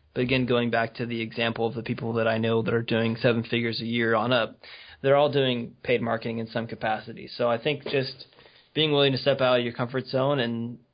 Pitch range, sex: 115-130 Hz, male